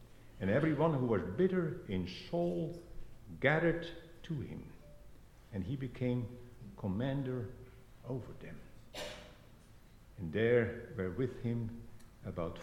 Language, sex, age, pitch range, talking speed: English, male, 60-79, 105-130 Hz, 105 wpm